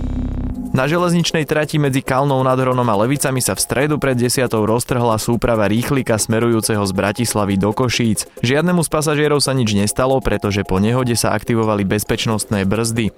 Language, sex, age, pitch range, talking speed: Slovak, male, 20-39, 105-135 Hz, 155 wpm